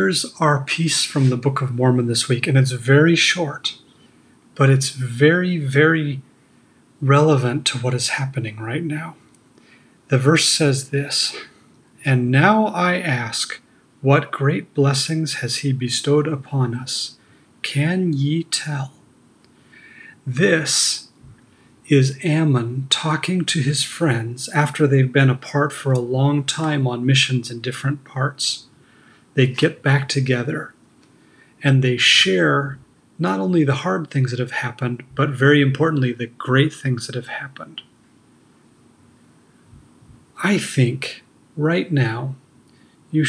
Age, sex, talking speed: 40-59, male, 130 wpm